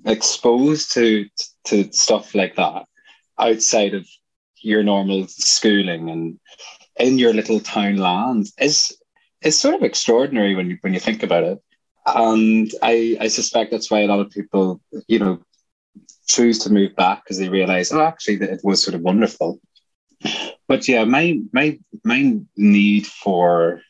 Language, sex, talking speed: English, male, 160 wpm